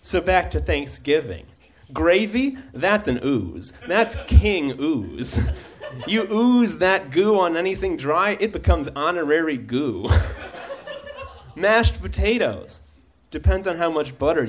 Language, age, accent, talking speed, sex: English, 30-49, American, 120 wpm, male